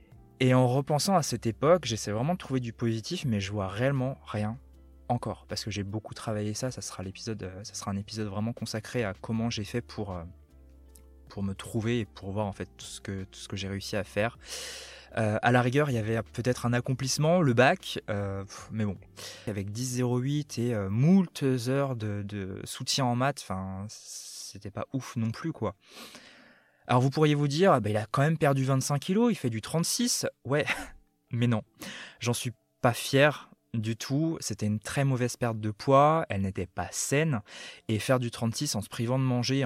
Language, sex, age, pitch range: French, male, 20-39, 105-130 Hz